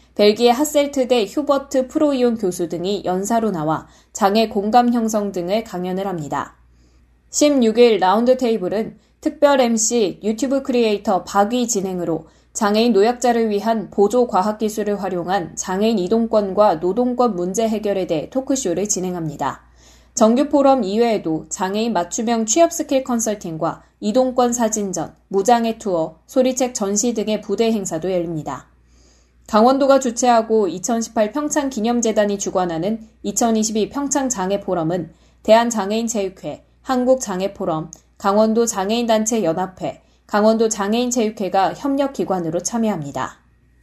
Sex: female